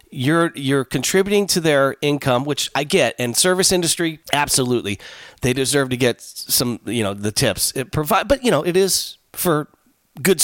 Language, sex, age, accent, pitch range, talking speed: English, male, 40-59, American, 125-175 Hz, 180 wpm